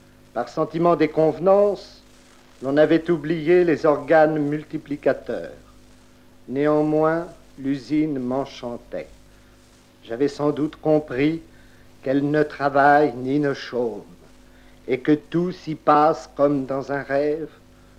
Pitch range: 130-165 Hz